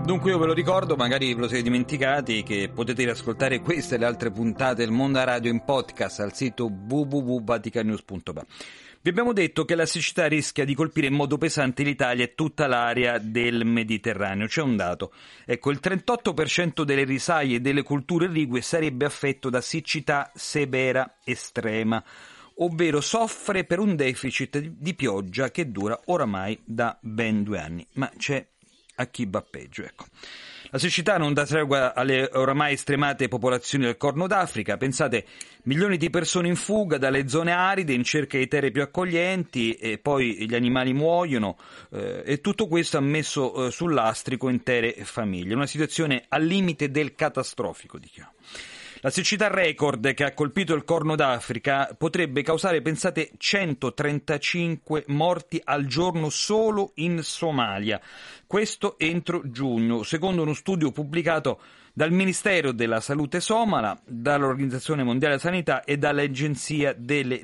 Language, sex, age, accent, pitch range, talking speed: Italian, male, 40-59, native, 125-165 Hz, 155 wpm